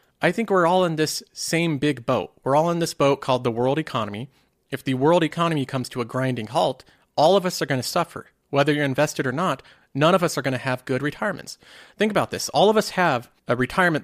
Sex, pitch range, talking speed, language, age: male, 125-165 Hz, 245 wpm, English, 40-59